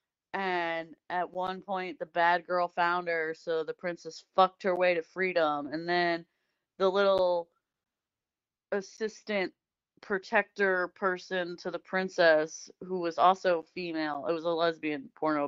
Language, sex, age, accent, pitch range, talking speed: English, female, 30-49, American, 170-200 Hz, 140 wpm